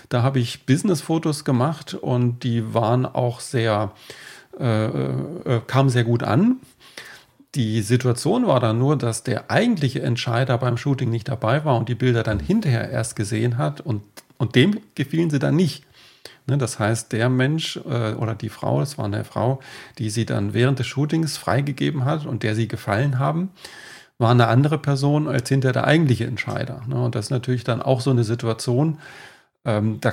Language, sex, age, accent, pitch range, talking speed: German, male, 40-59, German, 115-140 Hz, 180 wpm